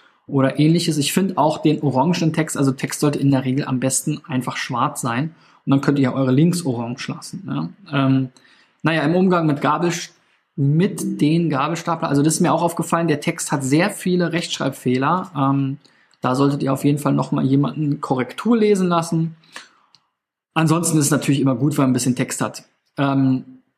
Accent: German